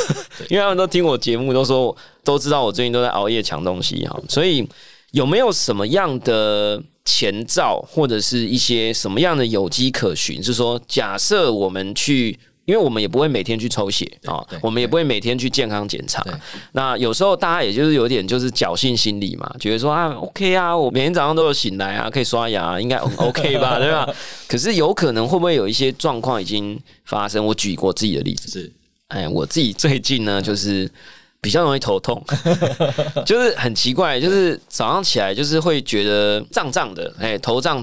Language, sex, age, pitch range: Chinese, male, 20-39, 105-145 Hz